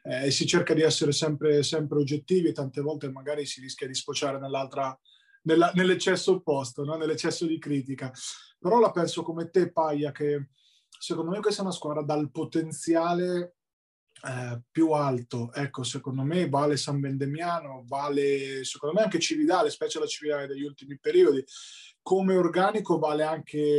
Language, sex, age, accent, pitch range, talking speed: Italian, male, 30-49, native, 140-165 Hz, 155 wpm